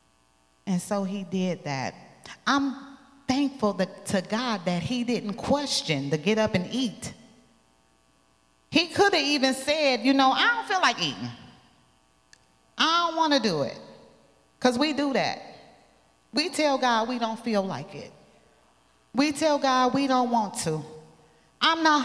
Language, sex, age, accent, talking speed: English, female, 30-49, American, 160 wpm